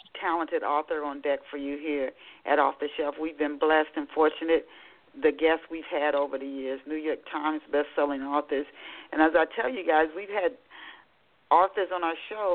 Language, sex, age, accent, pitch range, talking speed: English, female, 40-59, American, 155-190 Hz, 190 wpm